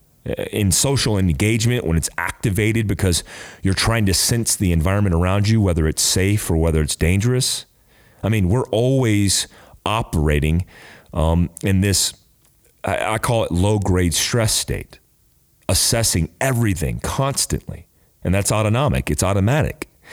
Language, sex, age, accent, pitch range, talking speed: English, male, 40-59, American, 85-110 Hz, 135 wpm